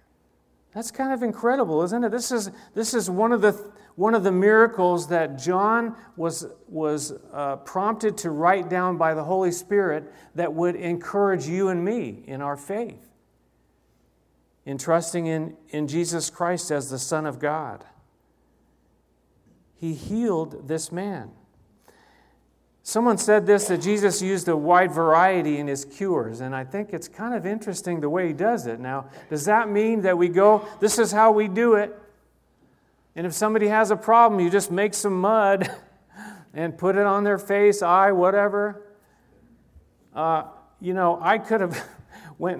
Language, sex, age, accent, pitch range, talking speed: English, male, 40-59, American, 160-215 Hz, 165 wpm